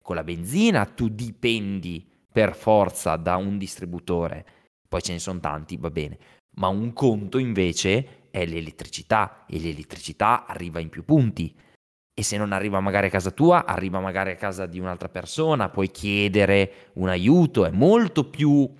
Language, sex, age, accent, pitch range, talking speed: Italian, male, 20-39, native, 95-145 Hz, 165 wpm